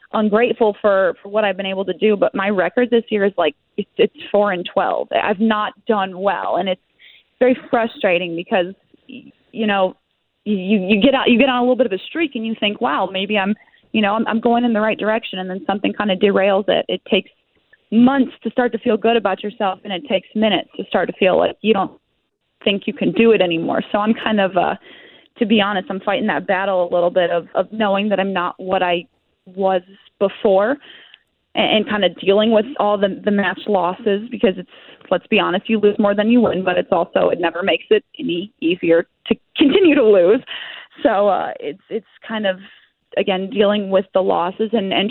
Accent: American